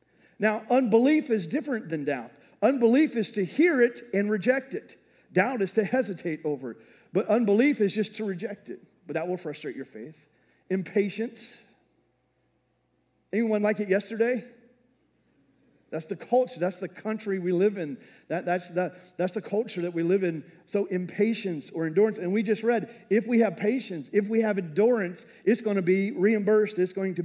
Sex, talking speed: male, 175 wpm